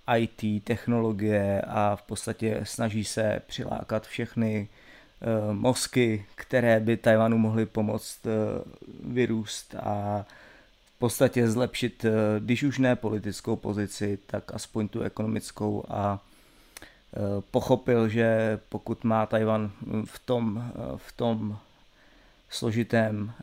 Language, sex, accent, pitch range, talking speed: Czech, male, native, 105-115 Hz, 100 wpm